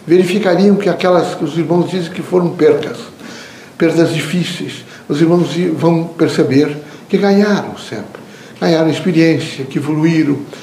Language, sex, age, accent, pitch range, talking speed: Portuguese, male, 60-79, Brazilian, 145-175 Hz, 130 wpm